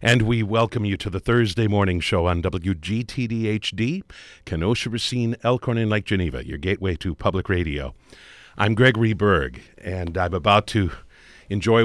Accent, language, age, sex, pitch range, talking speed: American, English, 50-69, male, 85-110 Hz, 150 wpm